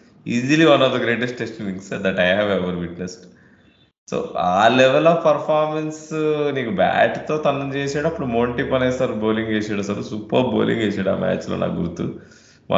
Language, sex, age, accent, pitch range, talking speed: Telugu, male, 20-39, native, 95-120 Hz, 180 wpm